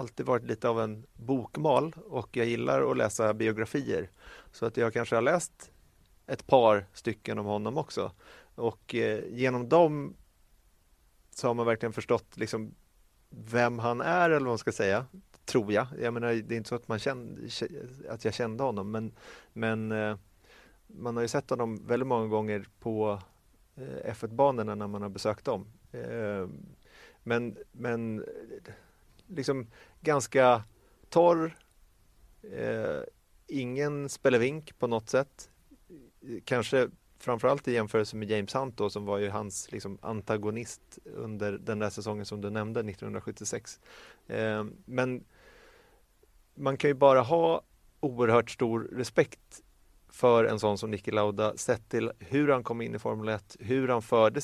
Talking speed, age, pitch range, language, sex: 155 wpm, 30-49, 105-130 Hz, Swedish, male